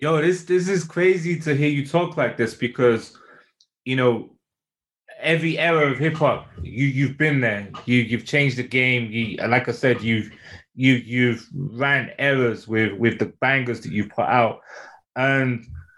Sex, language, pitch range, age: male, English, 120-150 Hz, 20-39